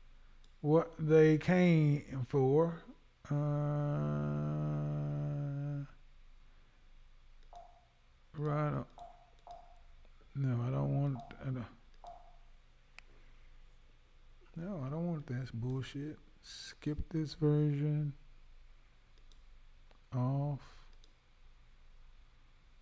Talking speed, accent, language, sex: 60 wpm, American, English, male